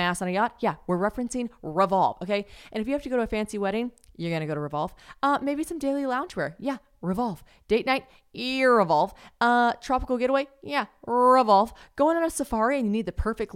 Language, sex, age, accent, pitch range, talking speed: English, female, 20-39, American, 175-225 Hz, 220 wpm